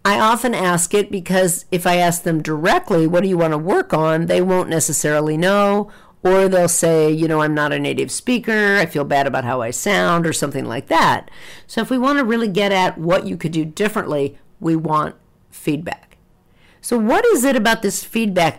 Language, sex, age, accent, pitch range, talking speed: English, female, 50-69, American, 160-200 Hz, 210 wpm